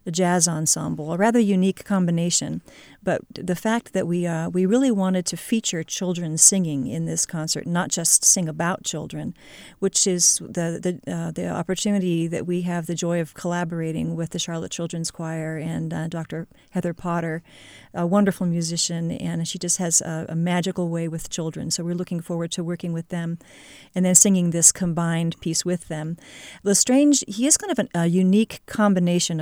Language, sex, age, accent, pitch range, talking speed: English, female, 40-59, American, 165-195 Hz, 185 wpm